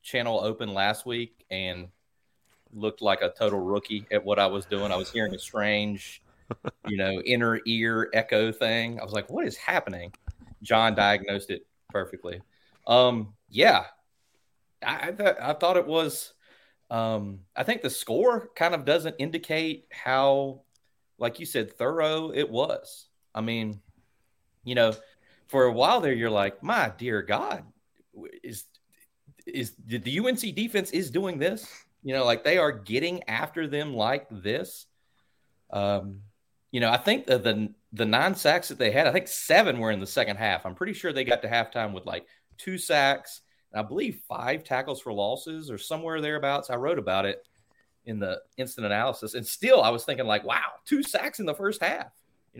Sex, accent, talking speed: male, American, 180 wpm